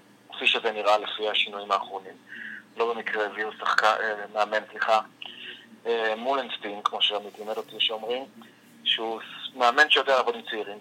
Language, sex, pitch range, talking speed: Hebrew, male, 105-125 Hz, 120 wpm